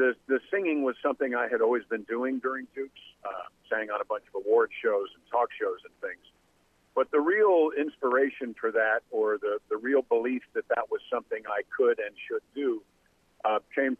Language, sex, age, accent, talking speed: English, male, 50-69, American, 200 wpm